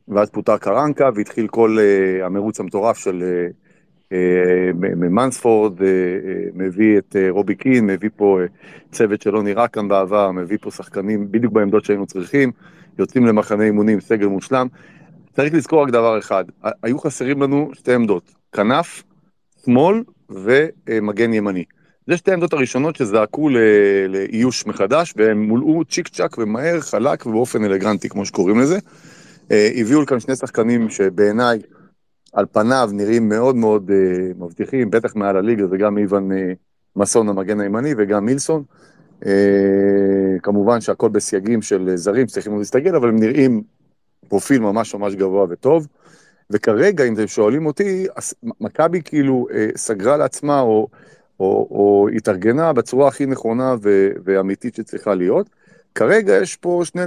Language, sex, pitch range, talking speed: Hebrew, male, 100-130 Hz, 145 wpm